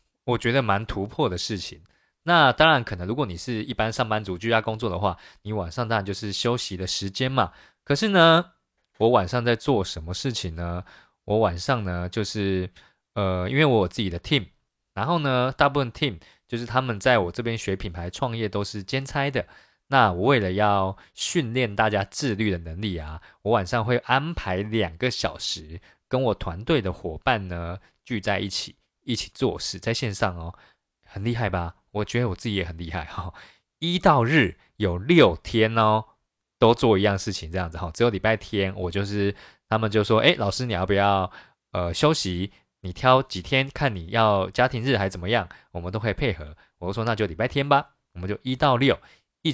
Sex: male